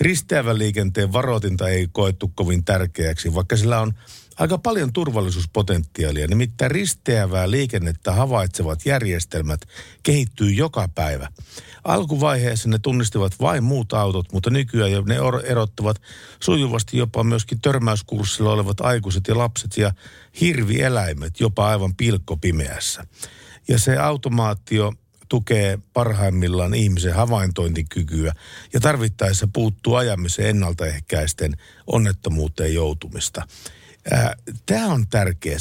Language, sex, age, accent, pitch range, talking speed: Finnish, male, 50-69, native, 90-120 Hz, 105 wpm